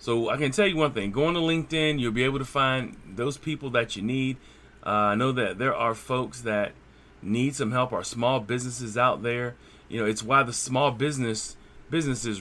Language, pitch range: English, 110-135 Hz